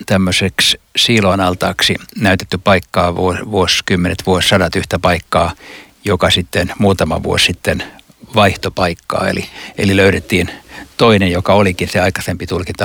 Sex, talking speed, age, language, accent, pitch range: male, 115 wpm, 60-79, Finnish, native, 90-110 Hz